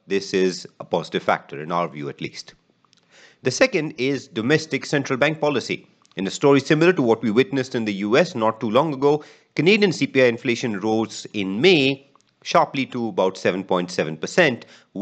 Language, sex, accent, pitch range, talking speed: English, male, Indian, 105-145 Hz, 170 wpm